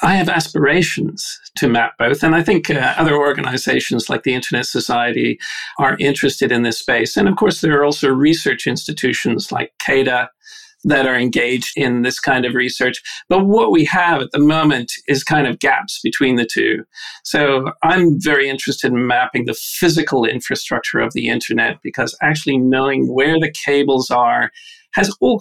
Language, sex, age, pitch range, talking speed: English, male, 50-69, 130-165 Hz, 175 wpm